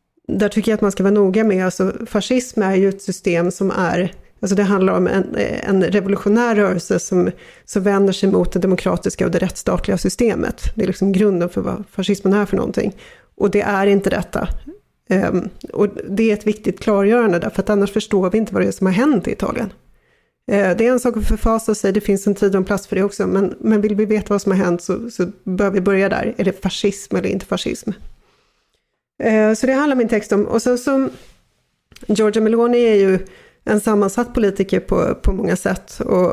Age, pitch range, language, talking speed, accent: 30-49, 190-220 Hz, Swedish, 215 wpm, native